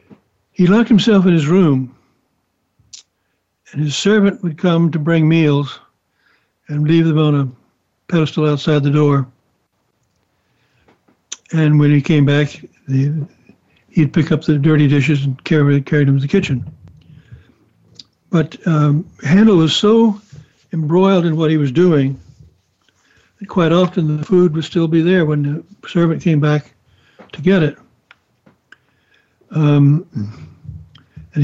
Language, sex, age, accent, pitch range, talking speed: English, male, 60-79, American, 140-175 Hz, 135 wpm